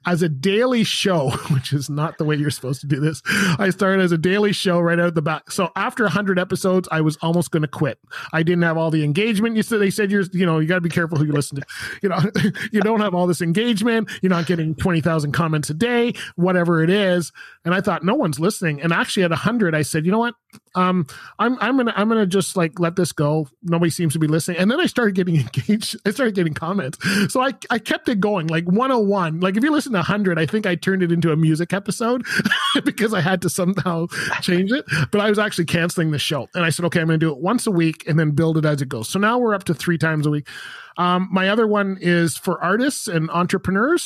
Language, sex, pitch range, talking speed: English, male, 165-205 Hz, 260 wpm